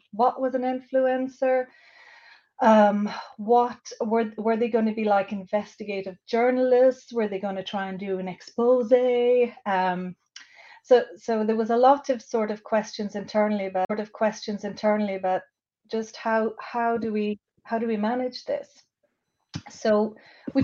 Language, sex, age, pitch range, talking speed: English, female, 30-49, 195-240 Hz, 155 wpm